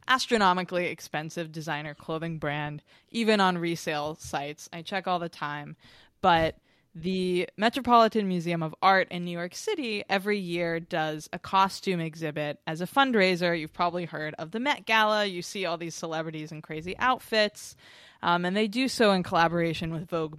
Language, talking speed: English, 170 wpm